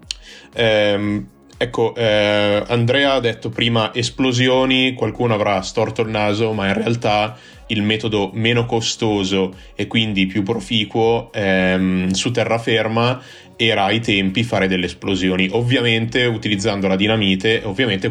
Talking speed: 125 wpm